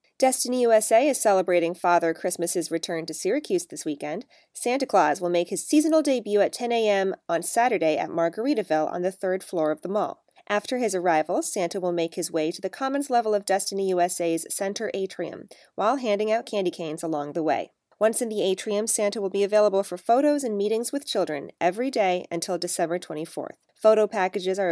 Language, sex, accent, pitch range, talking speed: English, female, American, 175-230 Hz, 190 wpm